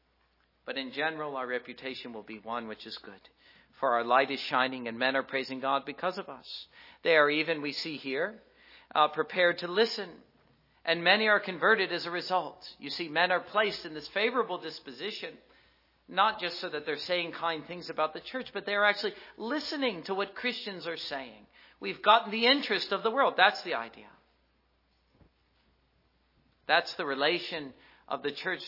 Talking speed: 180 wpm